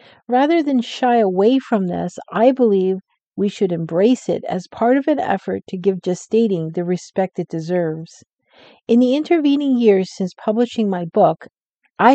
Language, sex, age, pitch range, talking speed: English, female, 50-69, 175-230 Hz, 165 wpm